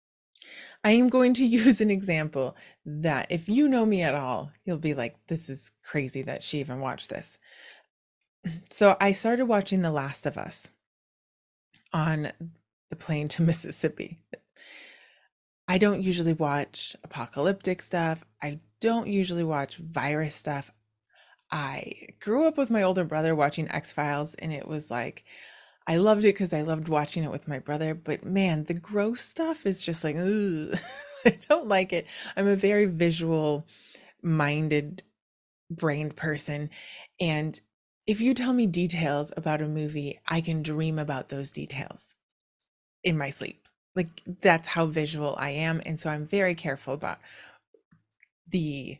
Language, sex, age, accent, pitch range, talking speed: English, female, 20-39, American, 150-190 Hz, 155 wpm